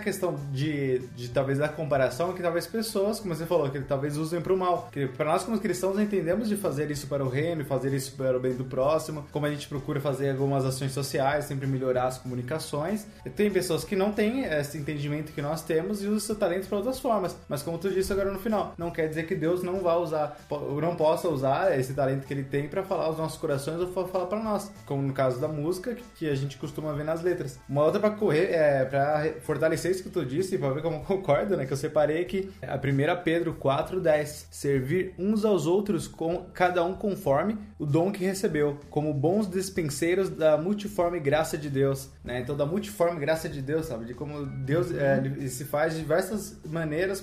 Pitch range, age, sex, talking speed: 140-180 Hz, 20-39, male, 220 wpm